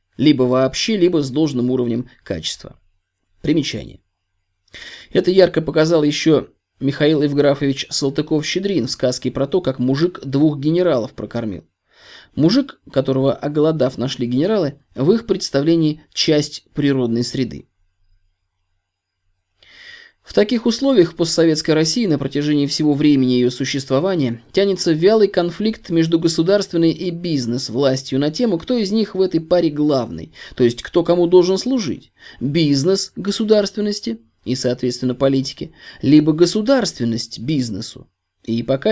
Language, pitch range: Russian, 125-170 Hz